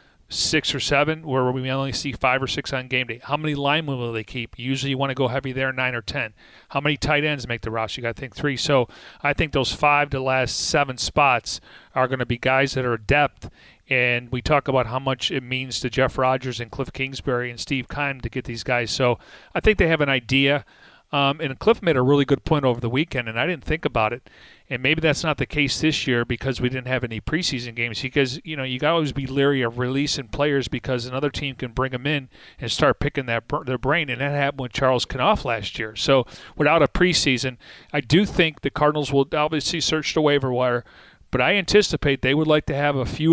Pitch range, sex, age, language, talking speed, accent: 130-155 Hz, male, 40-59, English, 245 wpm, American